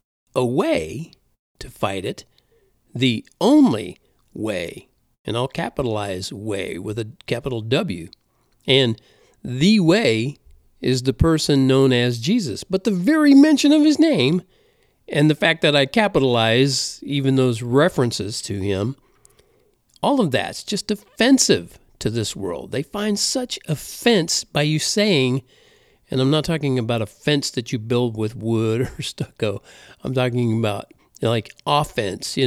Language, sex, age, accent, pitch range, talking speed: English, male, 50-69, American, 125-180 Hz, 150 wpm